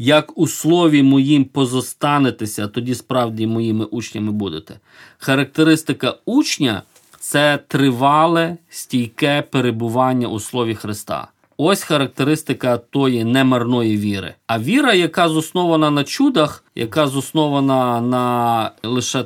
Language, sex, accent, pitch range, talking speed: Ukrainian, male, native, 120-165 Hz, 105 wpm